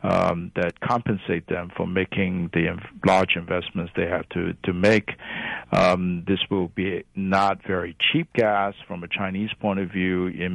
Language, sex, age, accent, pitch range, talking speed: English, male, 50-69, American, 90-110 Hz, 165 wpm